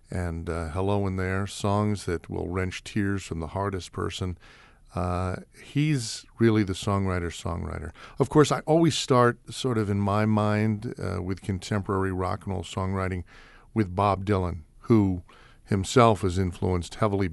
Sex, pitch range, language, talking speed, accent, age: male, 90-110 Hz, English, 155 wpm, American, 50-69